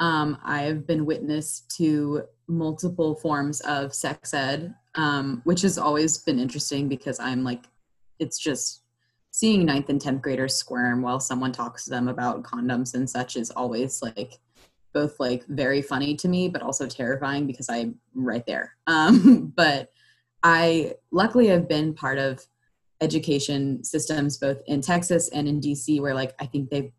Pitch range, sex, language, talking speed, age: 125-150 Hz, female, English, 160 wpm, 20-39